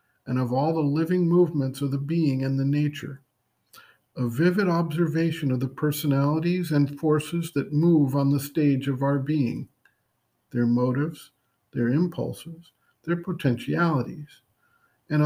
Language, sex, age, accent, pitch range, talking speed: English, male, 50-69, American, 135-160 Hz, 140 wpm